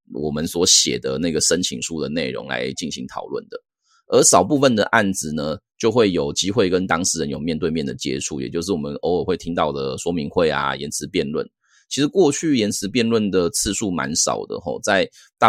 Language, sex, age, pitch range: Chinese, male, 30-49, 80-100 Hz